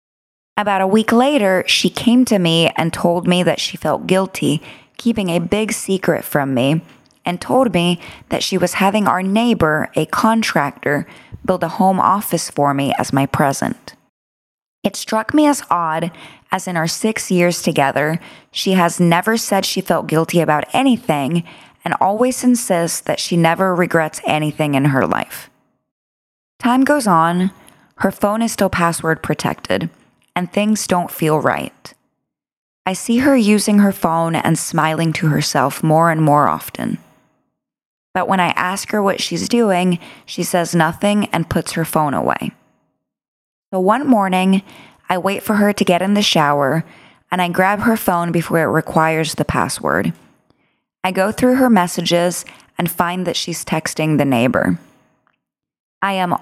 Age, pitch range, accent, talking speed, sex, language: 20-39, 160-205 Hz, American, 160 wpm, female, English